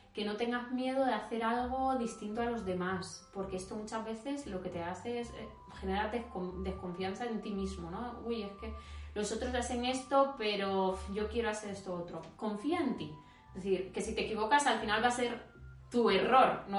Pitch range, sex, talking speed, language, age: 170-235 Hz, female, 200 wpm, Spanish, 20-39